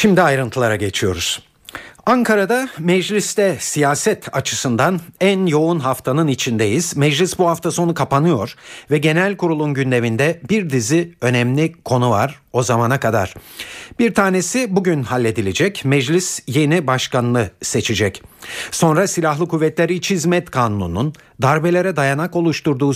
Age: 50-69